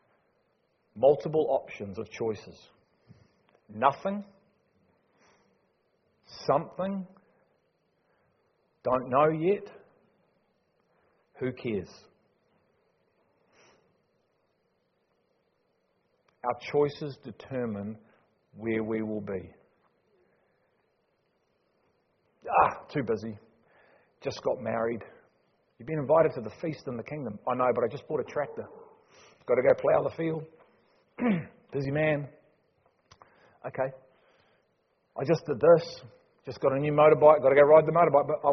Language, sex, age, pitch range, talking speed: English, male, 40-59, 115-170 Hz, 105 wpm